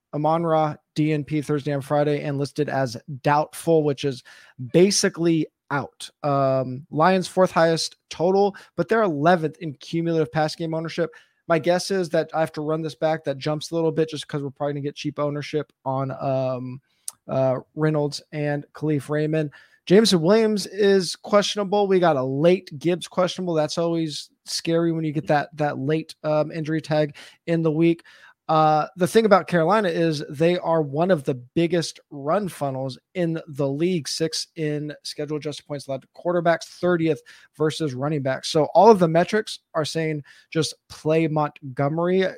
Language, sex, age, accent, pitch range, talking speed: English, male, 20-39, American, 145-170 Hz, 170 wpm